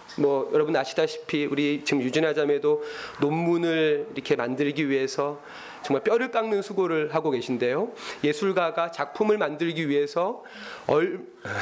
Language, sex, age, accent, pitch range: Korean, male, 30-49, native, 150-255 Hz